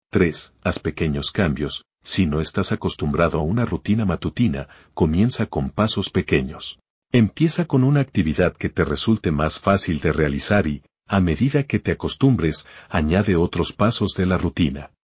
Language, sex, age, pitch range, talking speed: Spanish, male, 50-69, 80-110 Hz, 155 wpm